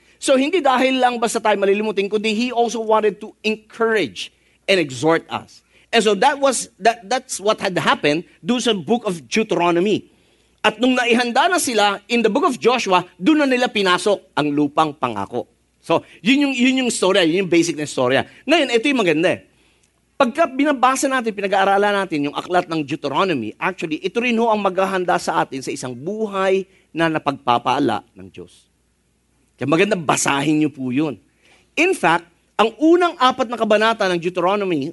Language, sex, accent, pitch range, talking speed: English, male, Filipino, 175-240 Hz, 175 wpm